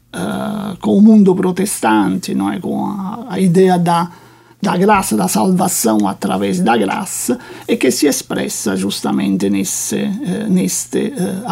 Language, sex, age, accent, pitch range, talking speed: Portuguese, male, 50-69, Italian, 180-215 Hz, 150 wpm